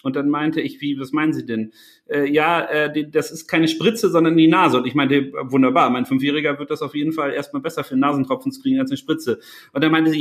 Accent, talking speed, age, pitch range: German, 255 wpm, 40-59, 150-210 Hz